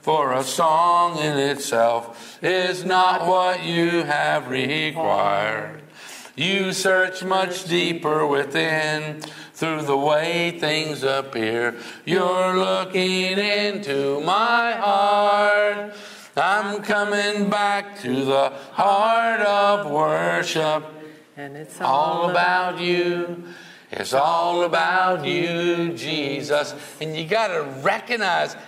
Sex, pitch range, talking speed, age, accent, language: male, 155-200 Hz, 100 wpm, 60-79, American, English